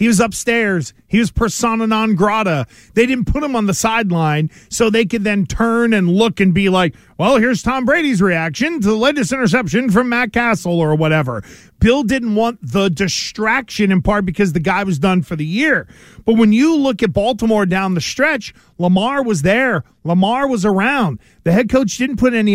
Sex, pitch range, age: male, 190-245 Hz, 40-59